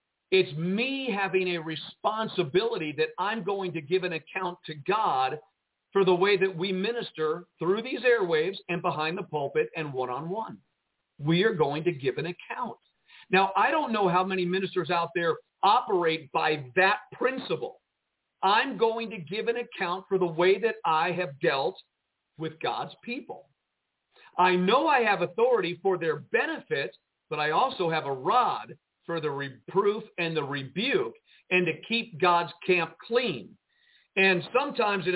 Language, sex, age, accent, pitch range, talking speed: English, male, 50-69, American, 170-225 Hz, 160 wpm